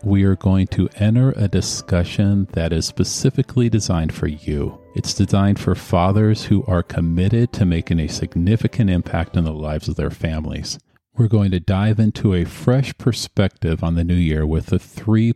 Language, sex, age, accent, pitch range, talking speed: English, male, 40-59, American, 85-105 Hz, 180 wpm